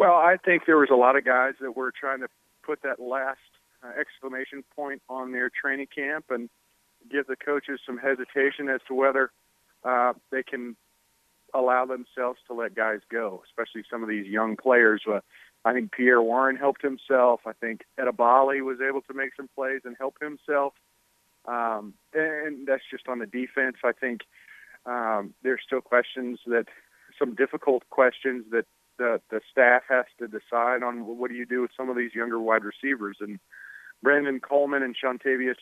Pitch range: 120-135 Hz